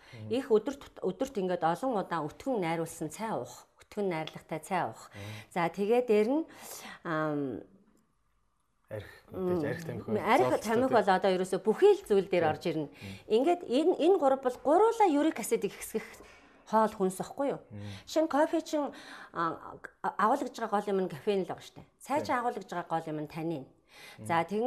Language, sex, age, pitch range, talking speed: Hungarian, female, 40-59, 180-260 Hz, 105 wpm